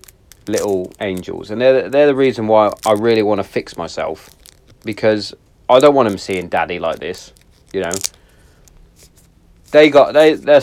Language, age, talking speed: English, 30-49, 165 wpm